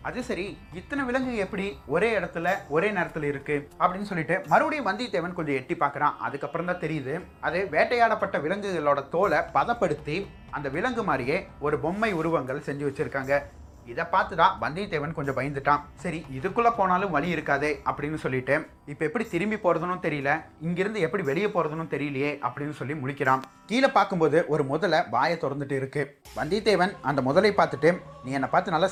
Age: 30-49